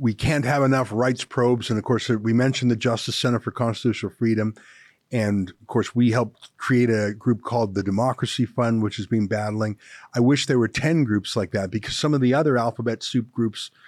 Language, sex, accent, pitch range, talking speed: English, male, American, 110-140 Hz, 210 wpm